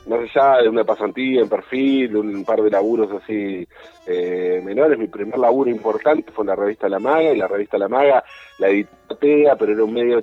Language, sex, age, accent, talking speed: Spanish, male, 40-59, Argentinian, 210 wpm